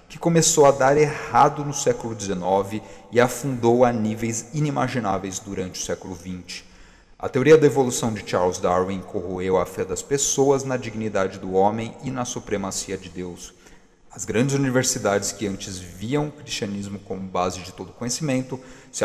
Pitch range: 100-130 Hz